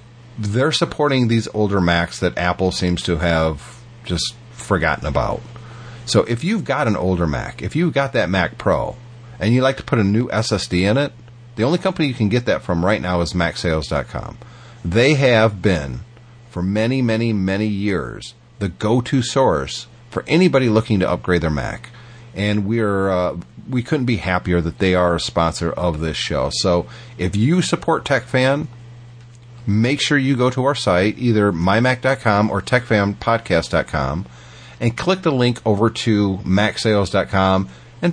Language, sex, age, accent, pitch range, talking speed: English, male, 40-59, American, 95-130 Hz, 165 wpm